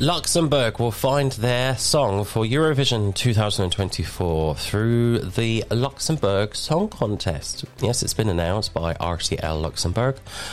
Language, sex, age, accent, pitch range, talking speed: English, male, 30-49, British, 85-115 Hz, 115 wpm